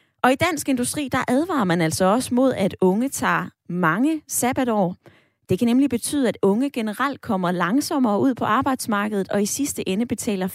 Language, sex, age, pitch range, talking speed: Danish, female, 20-39, 180-245 Hz, 180 wpm